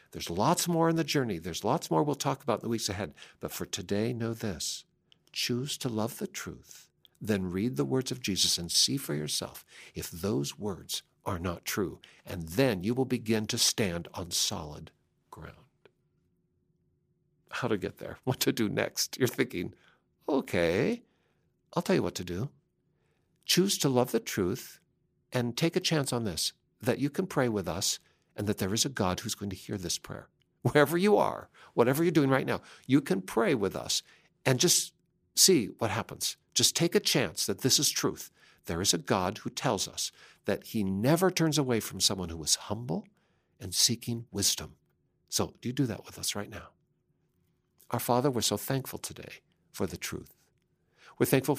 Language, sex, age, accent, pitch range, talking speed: English, male, 60-79, American, 100-145 Hz, 190 wpm